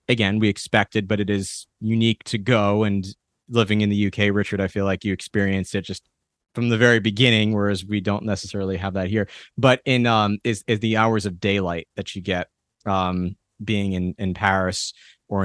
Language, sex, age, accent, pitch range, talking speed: English, male, 30-49, American, 95-110 Hz, 200 wpm